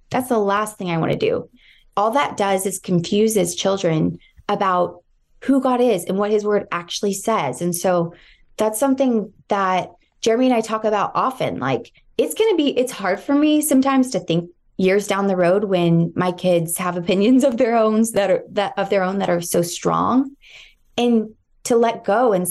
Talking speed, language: 185 wpm, English